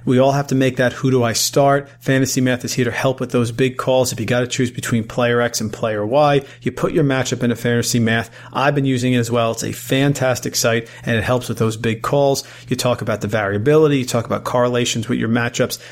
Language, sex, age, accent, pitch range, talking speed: English, male, 40-59, American, 115-130 Hz, 255 wpm